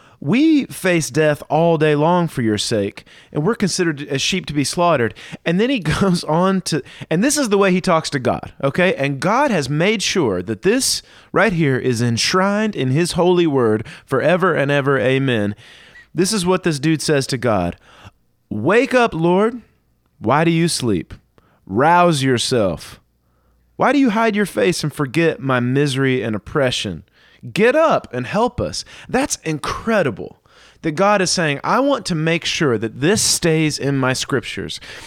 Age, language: 30-49, English